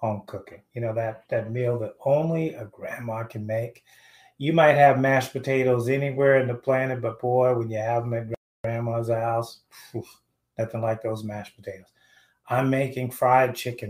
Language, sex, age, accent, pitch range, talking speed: English, male, 30-49, American, 115-145 Hz, 175 wpm